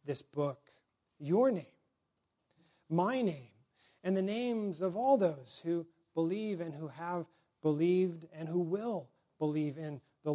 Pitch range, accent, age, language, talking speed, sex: 150-190 Hz, American, 40-59, English, 140 wpm, male